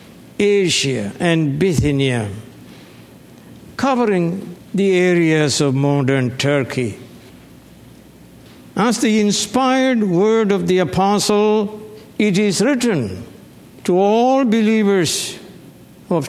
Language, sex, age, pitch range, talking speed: English, male, 60-79, 145-215 Hz, 85 wpm